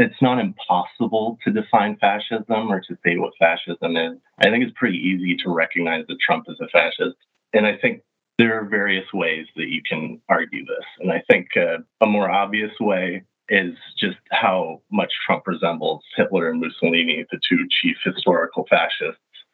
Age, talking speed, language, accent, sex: 30-49, 180 wpm, English, American, male